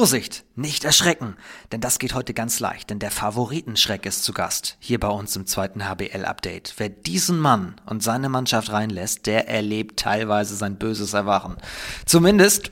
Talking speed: 165 wpm